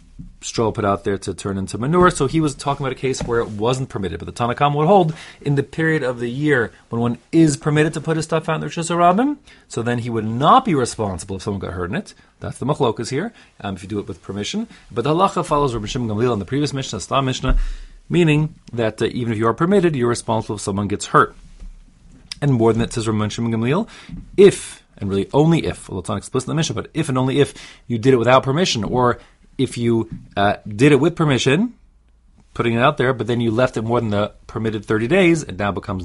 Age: 30-49